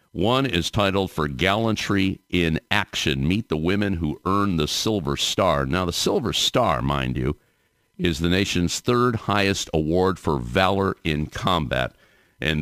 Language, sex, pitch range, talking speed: English, male, 85-110 Hz, 150 wpm